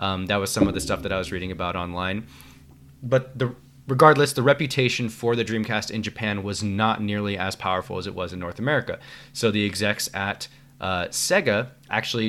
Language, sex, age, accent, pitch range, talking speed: English, male, 20-39, American, 95-130 Hz, 200 wpm